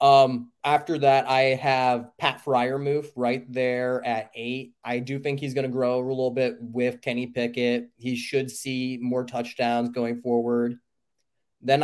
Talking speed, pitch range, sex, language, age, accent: 165 wpm, 120-140 Hz, male, English, 20-39, American